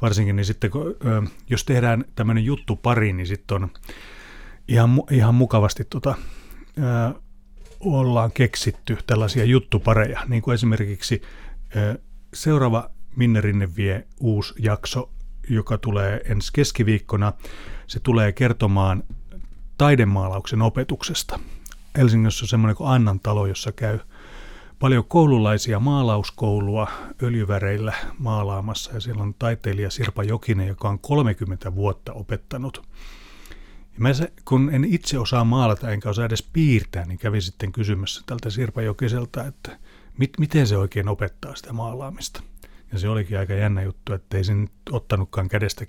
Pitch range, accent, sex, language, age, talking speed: 100-125 Hz, native, male, Finnish, 30-49, 130 wpm